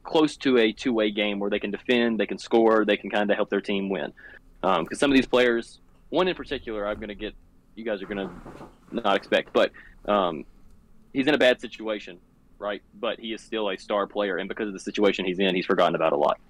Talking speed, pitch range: 245 wpm, 100-110 Hz